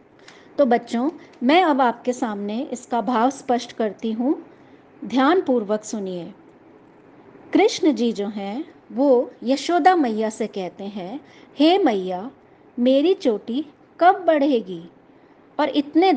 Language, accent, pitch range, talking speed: Hindi, native, 225-305 Hz, 125 wpm